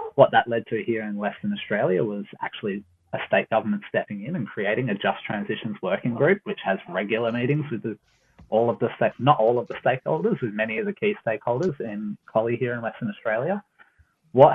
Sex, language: male, English